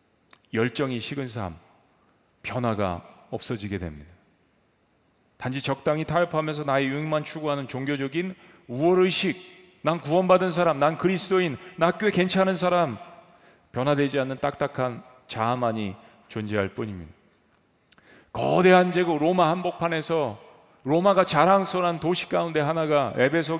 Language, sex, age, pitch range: Korean, male, 40-59, 125-180 Hz